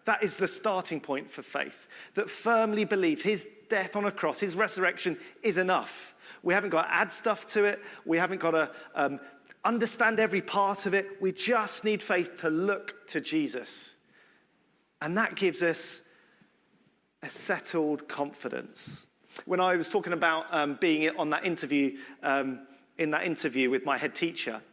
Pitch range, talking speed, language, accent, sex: 160-215 Hz, 170 wpm, English, British, male